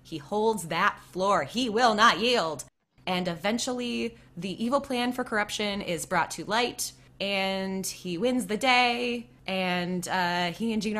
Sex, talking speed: female, 160 wpm